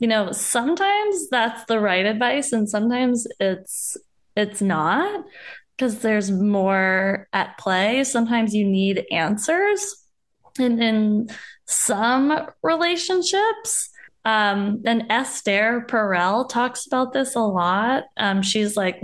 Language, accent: English, American